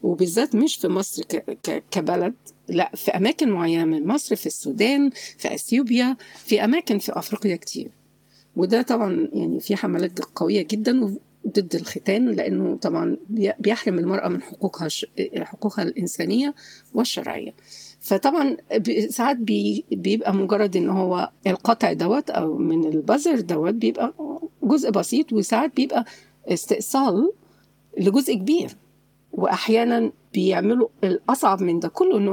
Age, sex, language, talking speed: 50-69, female, Arabic, 120 wpm